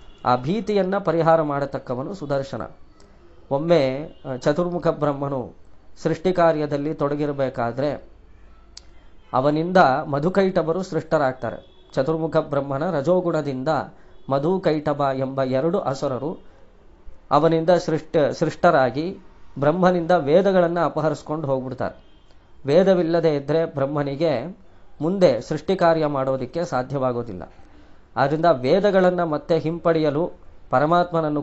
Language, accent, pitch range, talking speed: Kannada, native, 135-170 Hz, 75 wpm